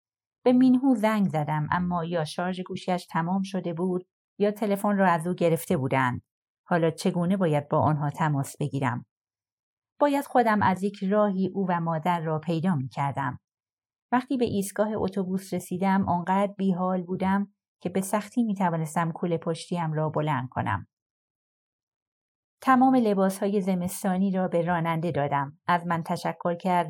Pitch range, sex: 155-195 Hz, female